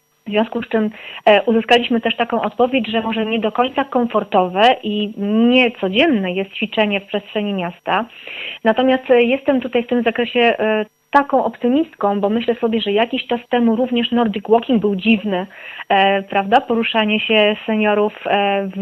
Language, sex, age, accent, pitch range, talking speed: Polish, female, 30-49, native, 210-250 Hz, 145 wpm